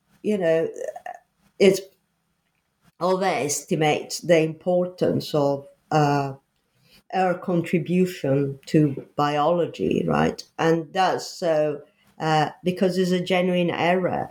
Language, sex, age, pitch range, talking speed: English, female, 50-69, 150-190 Hz, 90 wpm